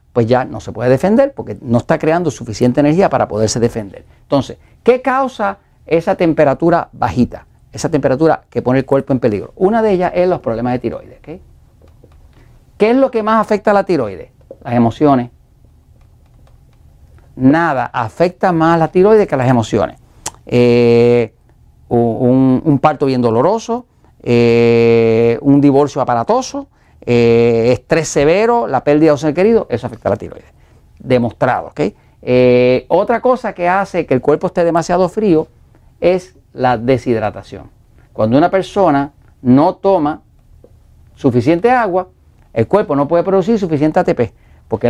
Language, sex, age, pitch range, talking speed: Spanish, male, 40-59, 120-185 Hz, 150 wpm